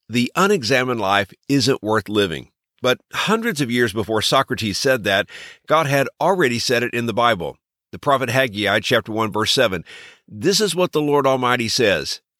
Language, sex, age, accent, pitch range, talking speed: English, male, 50-69, American, 120-170 Hz, 175 wpm